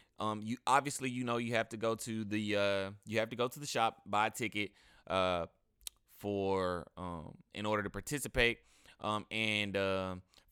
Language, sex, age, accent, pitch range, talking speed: English, male, 20-39, American, 100-115 Hz, 185 wpm